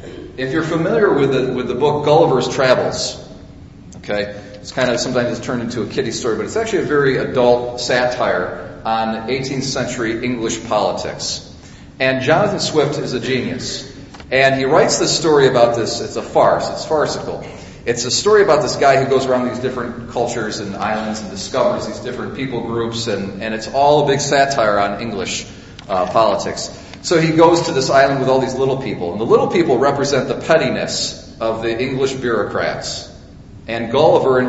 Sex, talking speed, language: male, 185 wpm, English